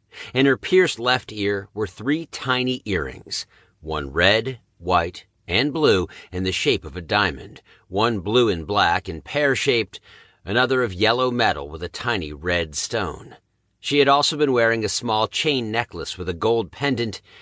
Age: 50-69